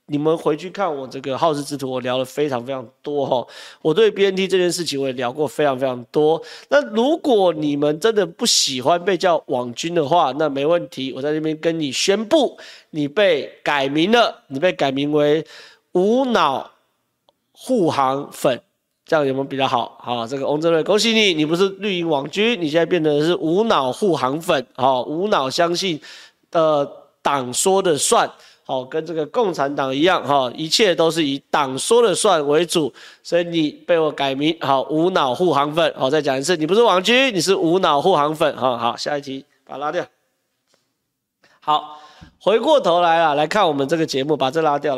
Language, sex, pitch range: Chinese, male, 140-175 Hz